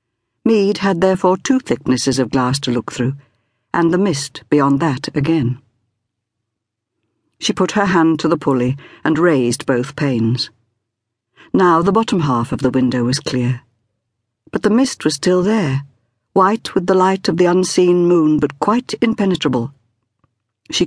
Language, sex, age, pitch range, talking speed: English, female, 60-79, 125-175 Hz, 155 wpm